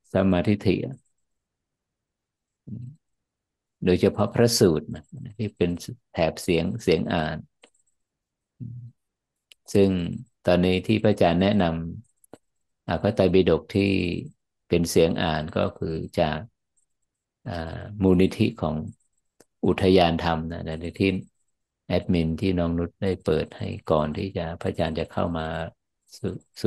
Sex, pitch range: male, 85-105 Hz